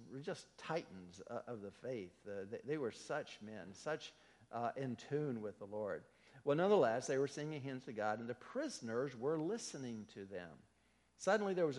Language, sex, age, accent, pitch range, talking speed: English, male, 60-79, American, 105-145 Hz, 175 wpm